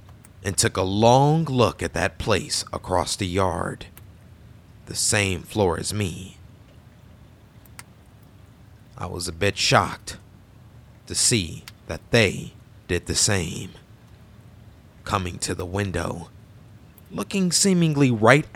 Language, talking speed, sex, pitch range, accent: English, 115 wpm, male, 95-120 Hz, American